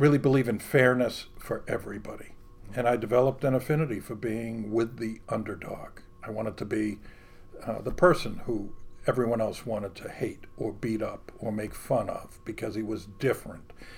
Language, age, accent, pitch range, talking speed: English, 50-69, American, 110-130 Hz, 170 wpm